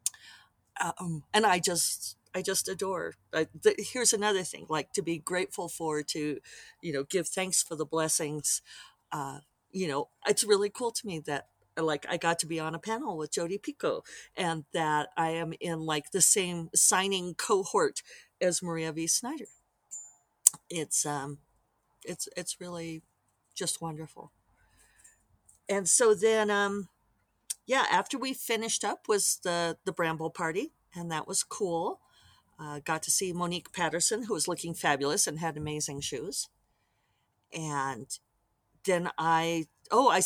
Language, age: English, 50-69